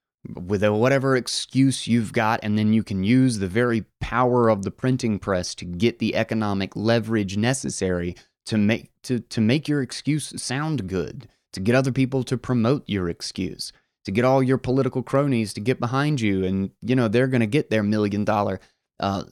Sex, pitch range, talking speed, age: male, 100-125 Hz, 195 wpm, 30-49